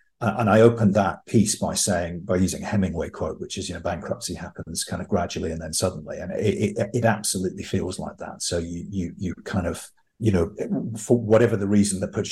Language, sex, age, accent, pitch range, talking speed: English, male, 40-59, British, 90-105 Hz, 220 wpm